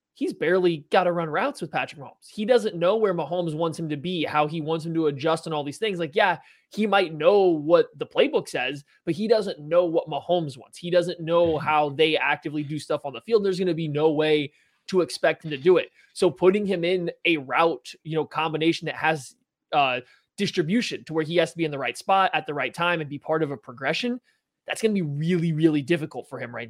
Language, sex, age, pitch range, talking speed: English, male, 20-39, 155-190 Hz, 250 wpm